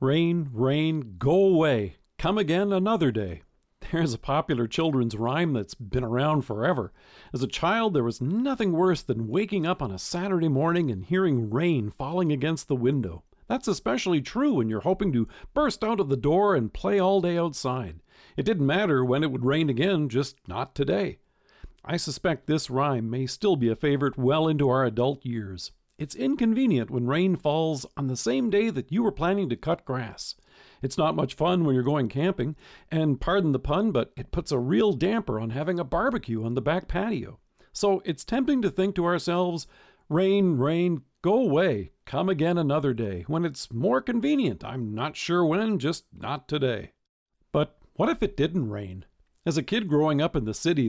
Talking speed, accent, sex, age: 190 wpm, American, male, 50-69